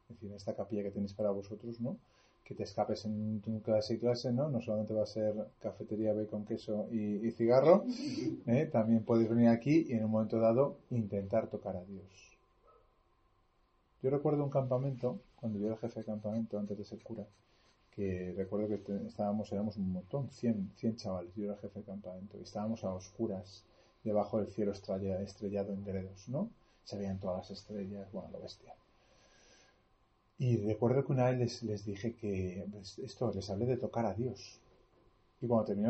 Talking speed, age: 185 wpm, 30-49